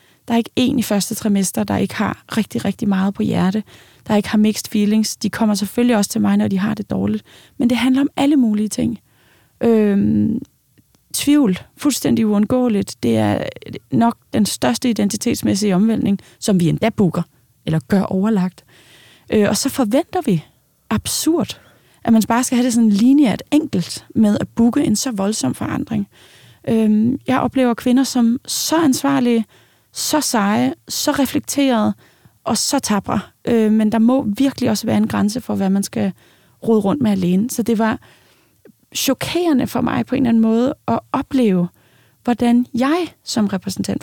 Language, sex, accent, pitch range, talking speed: Danish, female, native, 205-255 Hz, 170 wpm